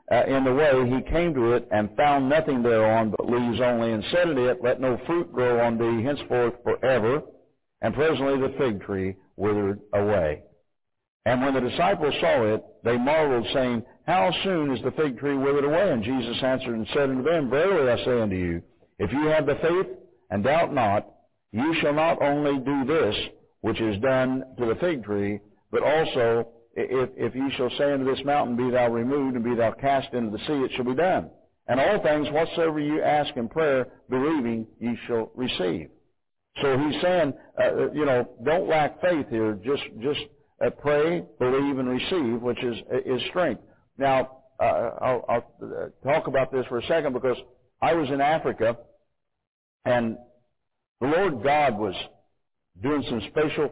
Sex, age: male, 60-79